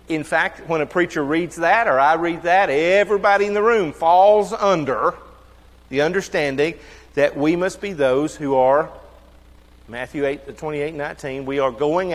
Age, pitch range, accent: 40-59, 135-205 Hz, American